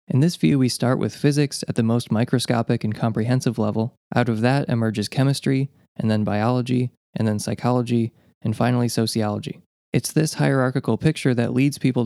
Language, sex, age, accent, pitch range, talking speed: English, male, 20-39, American, 115-135 Hz, 175 wpm